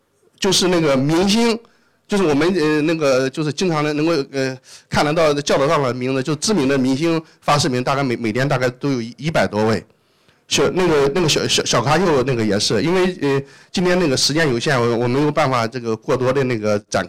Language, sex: Chinese, male